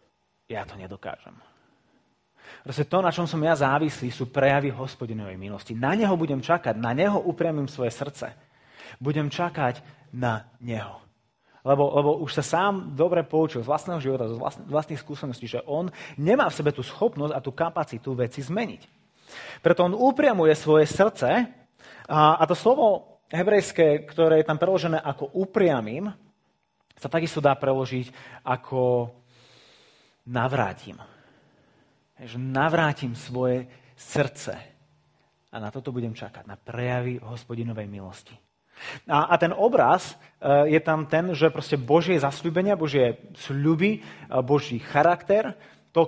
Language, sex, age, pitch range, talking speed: Slovak, male, 30-49, 125-160 Hz, 130 wpm